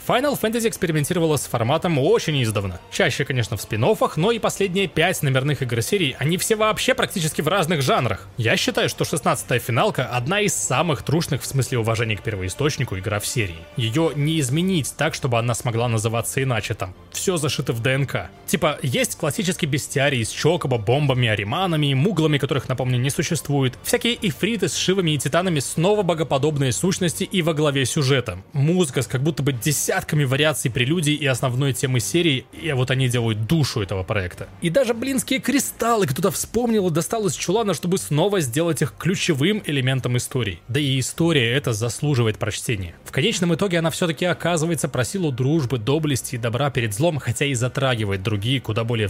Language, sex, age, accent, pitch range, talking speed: Russian, male, 20-39, native, 120-170 Hz, 175 wpm